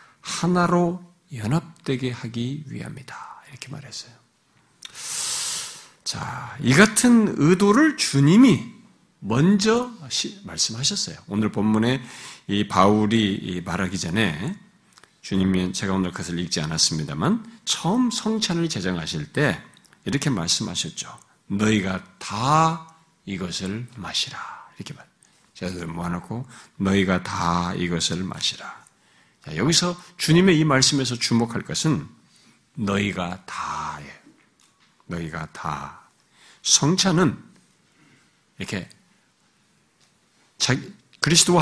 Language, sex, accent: Korean, male, native